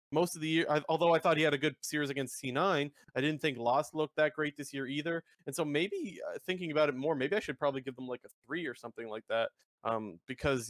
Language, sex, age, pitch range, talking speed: English, male, 30-49, 130-165 Hz, 270 wpm